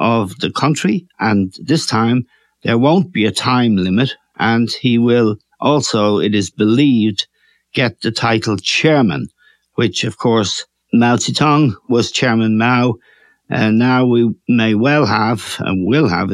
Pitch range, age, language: 110-130 Hz, 60-79, English